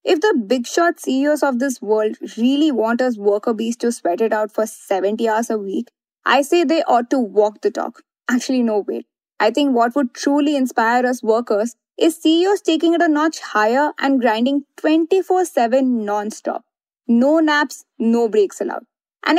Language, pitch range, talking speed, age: English, 235-315 Hz, 175 wpm, 20-39